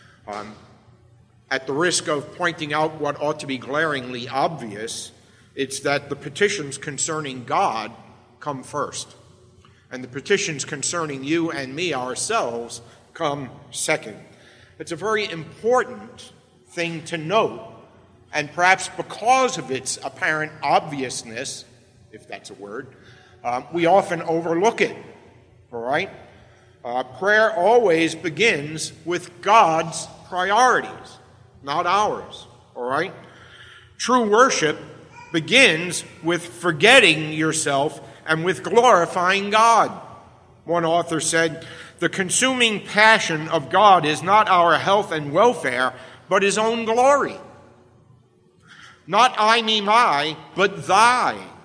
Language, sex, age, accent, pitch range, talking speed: English, male, 50-69, American, 135-180 Hz, 115 wpm